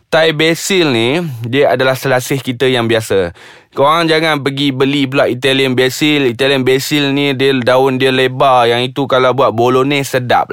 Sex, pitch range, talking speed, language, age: male, 115-140 Hz, 165 wpm, Malay, 20-39